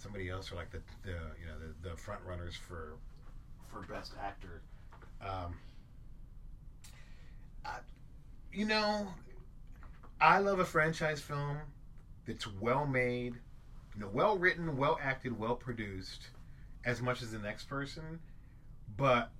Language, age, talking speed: English, 30-49, 135 wpm